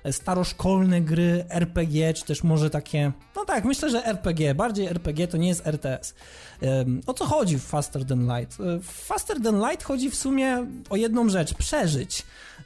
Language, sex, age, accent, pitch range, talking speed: Polish, male, 20-39, native, 155-205 Hz, 165 wpm